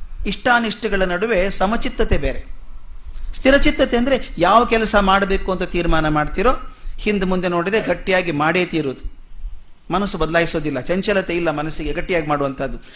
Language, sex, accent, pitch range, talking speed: Kannada, male, native, 150-205 Hz, 115 wpm